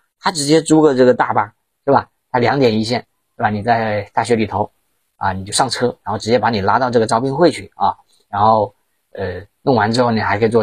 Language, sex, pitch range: Chinese, male, 100-125 Hz